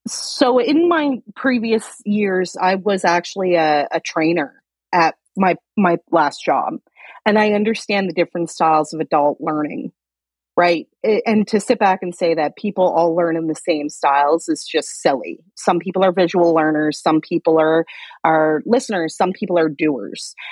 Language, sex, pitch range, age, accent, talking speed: English, female, 160-205 Hz, 30-49, American, 165 wpm